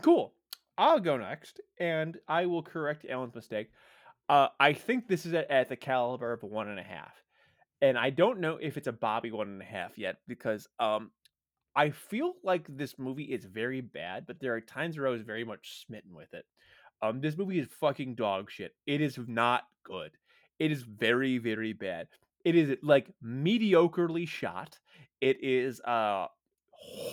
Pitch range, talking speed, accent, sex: 115-160 Hz, 185 wpm, American, male